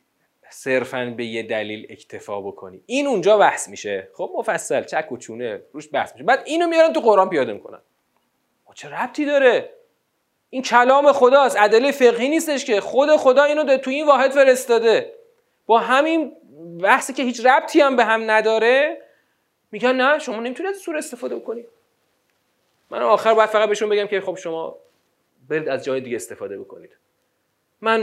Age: 30-49